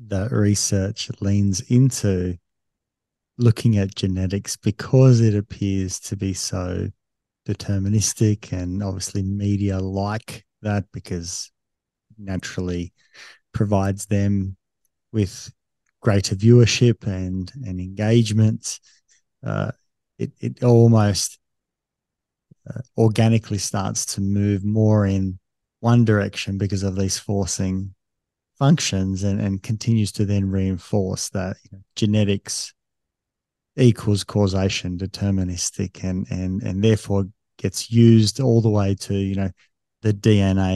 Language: English